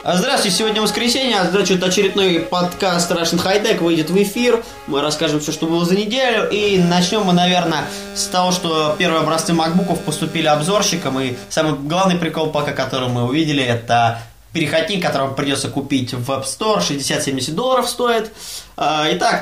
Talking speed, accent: 160 wpm, native